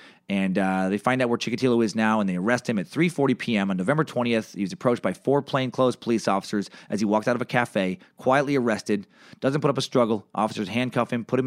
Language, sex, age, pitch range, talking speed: English, male, 30-49, 110-140 Hz, 240 wpm